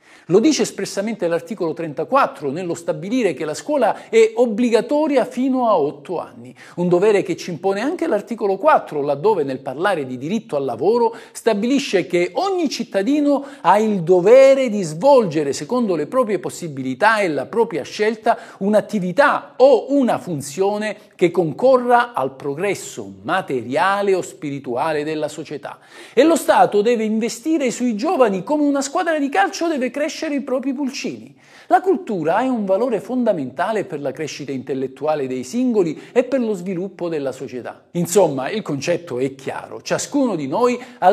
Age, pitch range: 50-69, 165-260 Hz